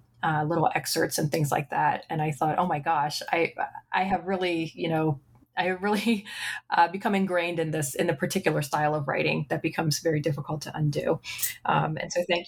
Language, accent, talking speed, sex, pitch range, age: English, American, 205 wpm, female, 155-185 Hz, 30-49